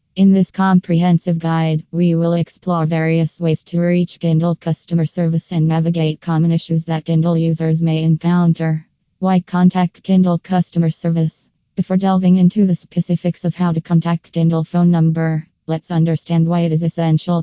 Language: English